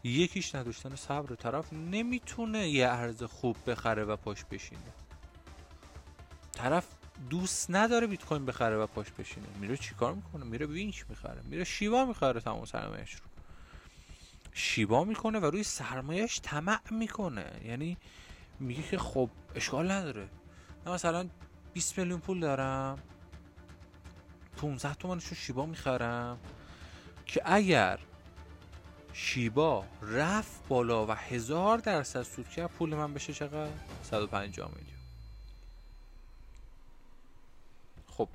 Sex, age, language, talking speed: male, 30-49, Persian, 115 wpm